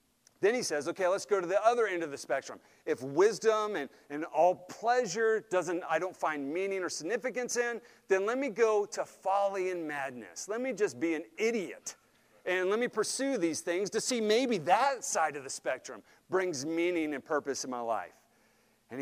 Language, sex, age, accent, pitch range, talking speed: English, male, 40-59, American, 155-230 Hz, 200 wpm